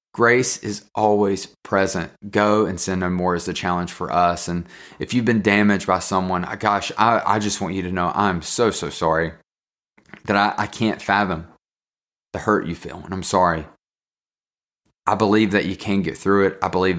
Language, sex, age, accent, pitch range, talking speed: English, male, 20-39, American, 90-100 Hz, 195 wpm